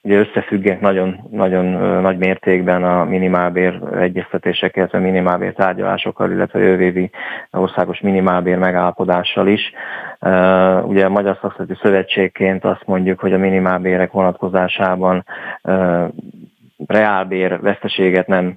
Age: 20-39